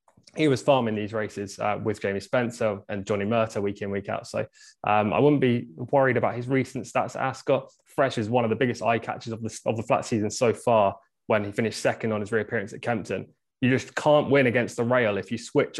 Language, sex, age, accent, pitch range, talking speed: English, male, 20-39, British, 110-130 Hz, 240 wpm